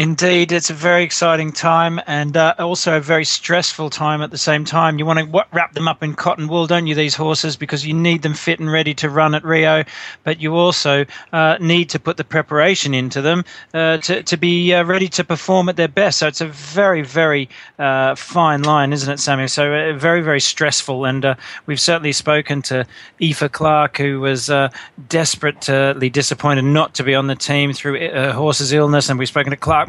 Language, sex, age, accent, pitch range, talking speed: English, male, 40-59, Australian, 135-165 Hz, 215 wpm